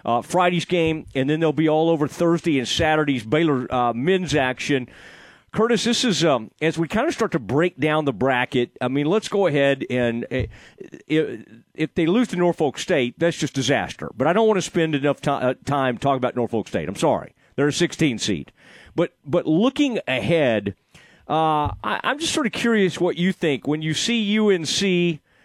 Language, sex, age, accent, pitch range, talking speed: English, male, 40-59, American, 135-175 Hz, 200 wpm